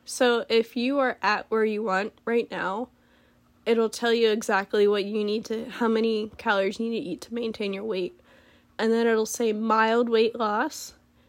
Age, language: 10-29, English